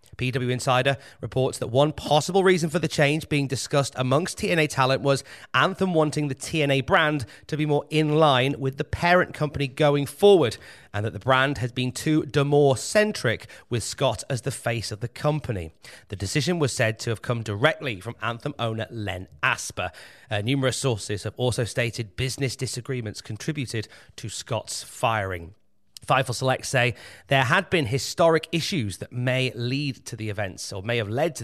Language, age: English, 30-49